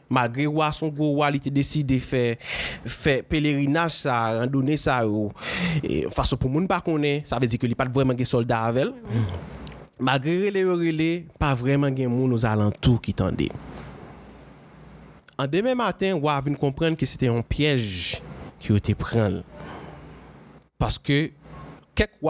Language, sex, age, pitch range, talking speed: French, male, 30-49, 125-165 Hz, 160 wpm